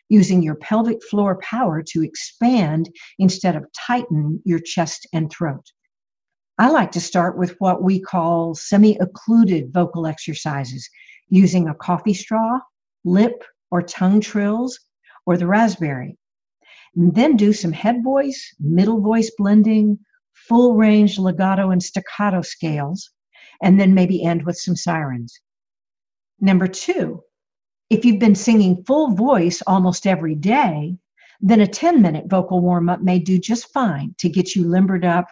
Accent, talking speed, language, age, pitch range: American, 145 wpm, English, 60-79, 170-215 Hz